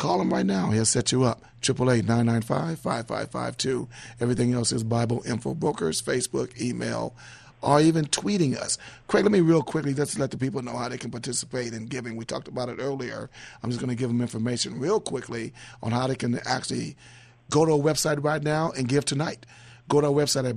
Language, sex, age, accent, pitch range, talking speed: English, male, 40-59, American, 120-140 Hz, 205 wpm